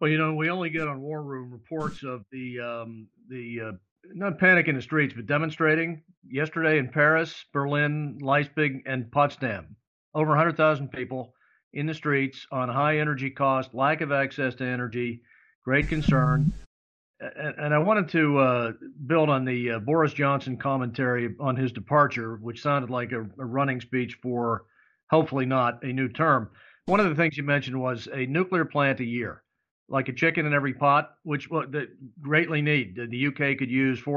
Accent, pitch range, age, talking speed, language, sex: American, 125-150 Hz, 50-69, 185 wpm, English, male